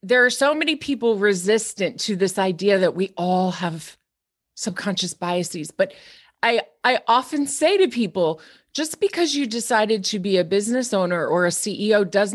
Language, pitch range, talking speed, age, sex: English, 195-275 Hz, 170 wpm, 30-49, female